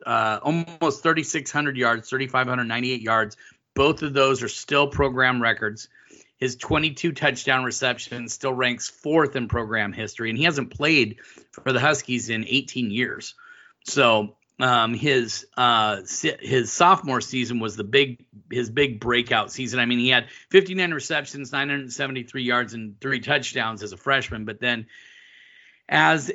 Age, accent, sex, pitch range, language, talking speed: 30-49, American, male, 120-140 Hz, English, 170 wpm